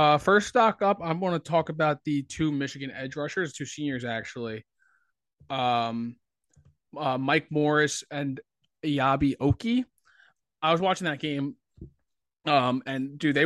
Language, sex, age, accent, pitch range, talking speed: English, male, 20-39, American, 120-145 Hz, 145 wpm